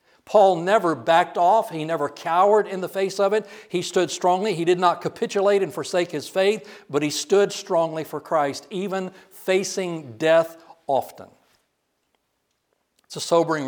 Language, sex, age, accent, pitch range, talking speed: English, male, 60-79, American, 140-170 Hz, 160 wpm